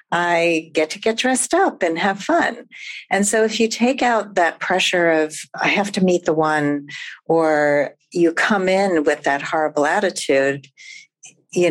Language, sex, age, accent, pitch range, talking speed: English, female, 50-69, American, 150-185 Hz, 170 wpm